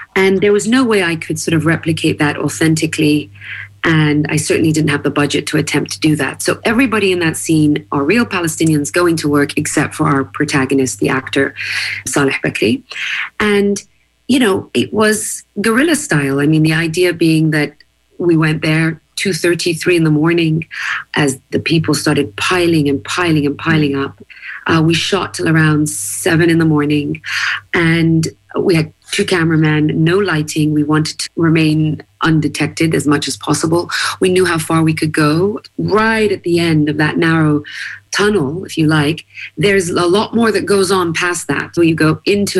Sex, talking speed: female, 180 wpm